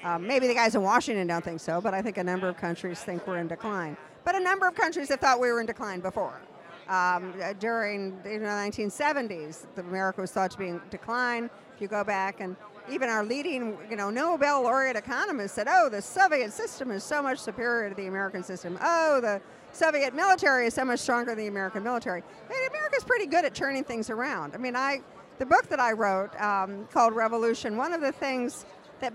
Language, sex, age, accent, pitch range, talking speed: English, female, 50-69, American, 200-265 Hz, 220 wpm